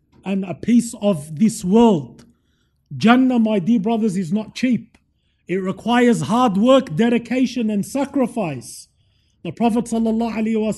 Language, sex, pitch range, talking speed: English, male, 195-245 Hz, 130 wpm